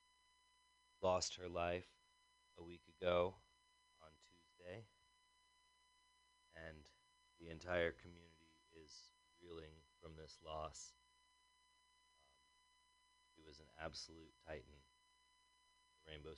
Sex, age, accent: male, 30-49, American